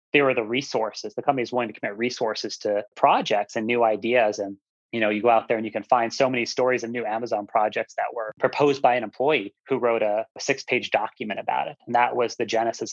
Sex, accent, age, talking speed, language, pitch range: male, American, 30-49, 240 wpm, English, 110-125 Hz